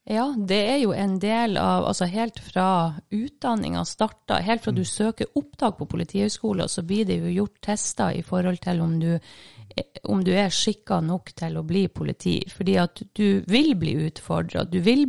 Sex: female